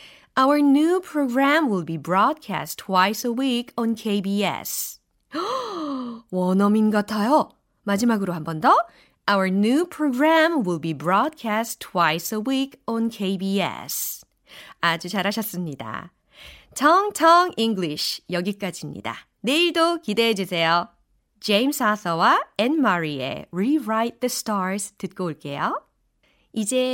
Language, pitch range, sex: Korean, 185-290 Hz, female